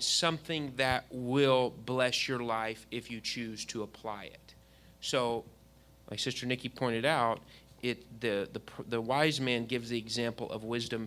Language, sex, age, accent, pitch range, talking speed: English, male, 30-49, American, 115-140 Hz, 165 wpm